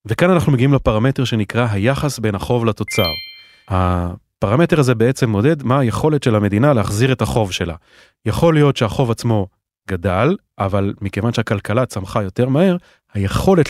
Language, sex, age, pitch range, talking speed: Hebrew, male, 30-49, 110-145 Hz, 145 wpm